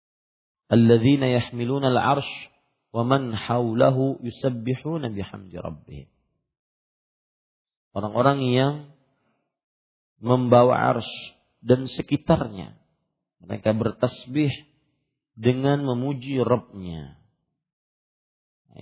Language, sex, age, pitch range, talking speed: Malay, male, 40-59, 105-140 Hz, 65 wpm